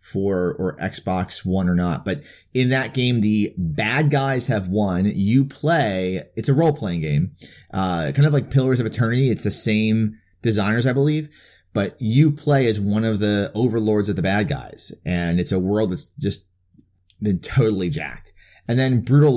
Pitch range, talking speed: 100-130 Hz, 180 wpm